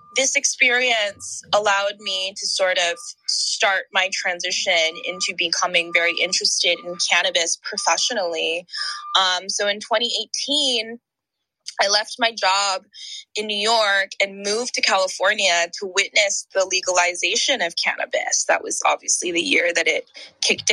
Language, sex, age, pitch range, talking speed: English, female, 20-39, 180-230 Hz, 135 wpm